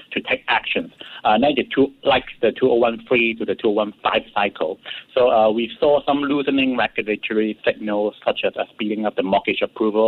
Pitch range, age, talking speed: 110-170 Hz, 60-79, 165 wpm